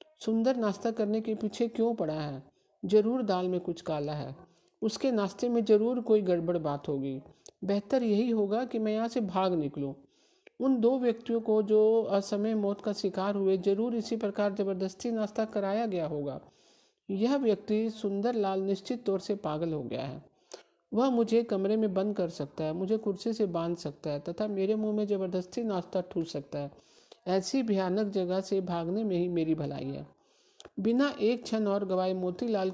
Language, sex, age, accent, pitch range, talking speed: Hindi, male, 50-69, native, 185-225 Hz, 180 wpm